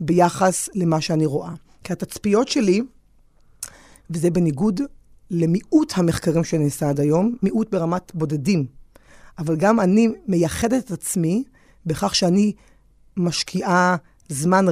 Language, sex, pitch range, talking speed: Hebrew, female, 160-195 Hz, 110 wpm